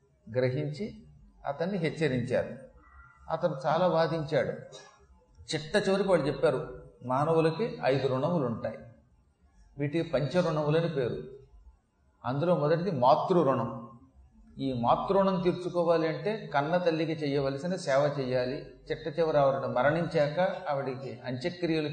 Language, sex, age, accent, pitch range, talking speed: Telugu, male, 40-59, native, 130-190 Hz, 100 wpm